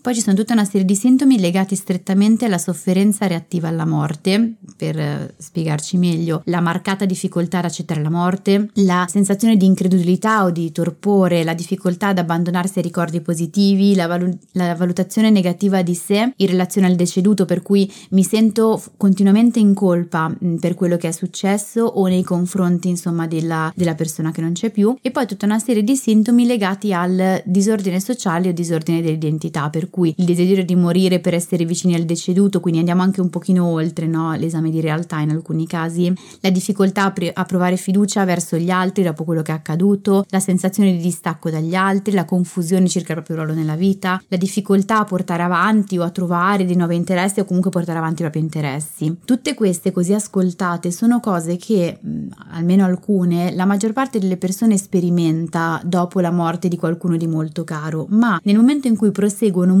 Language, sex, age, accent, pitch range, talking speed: Italian, female, 20-39, native, 170-200 Hz, 185 wpm